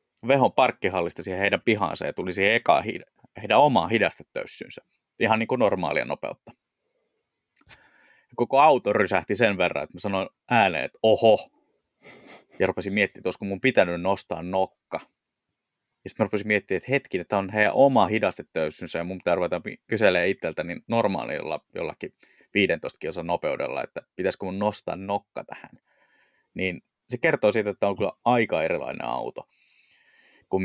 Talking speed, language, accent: 145 wpm, Finnish, native